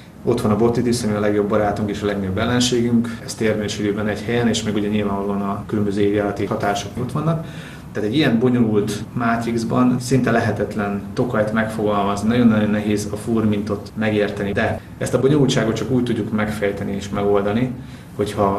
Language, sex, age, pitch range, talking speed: Hungarian, male, 30-49, 105-115 Hz, 165 wpm